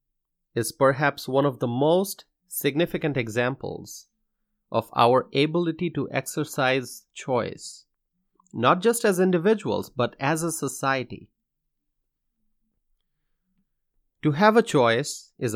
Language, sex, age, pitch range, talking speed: English, male, 30-49, 125-170 Hz, 105 wpm